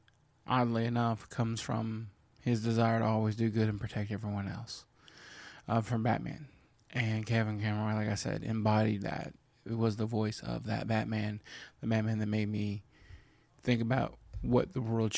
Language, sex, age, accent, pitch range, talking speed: English, male, 20-39, American, 110-125 Hz, 165 wpm